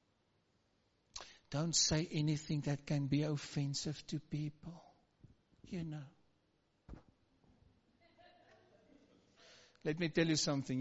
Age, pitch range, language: 60-79, 150-245 Hz, English